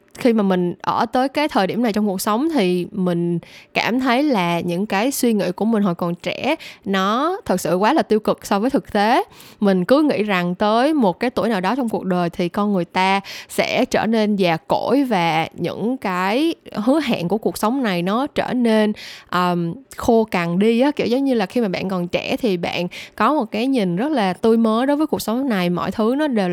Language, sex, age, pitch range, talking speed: Vietnamese, female, 10-29, 180-245 Hz, 230 wpm